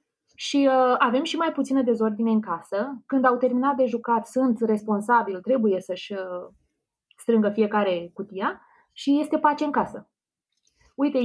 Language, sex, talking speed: Romanian, female, 150 wpm